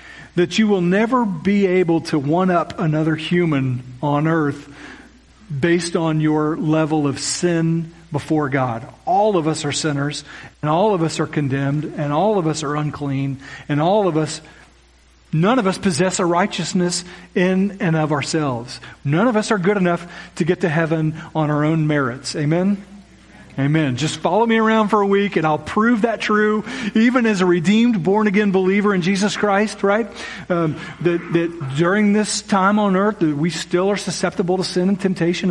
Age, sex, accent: 40-59, male, American